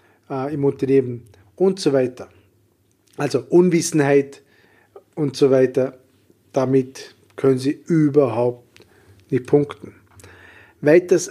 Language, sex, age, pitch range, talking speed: German, male, 40-59, 120-155 Hz, 90 wpm